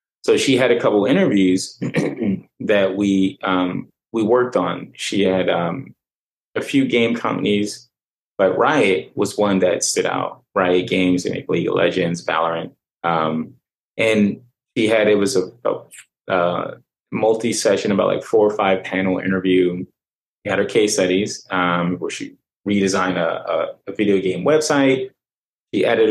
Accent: American